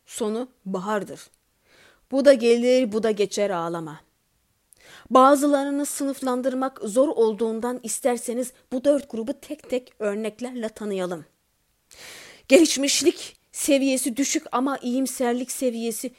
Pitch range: 210-260 Hz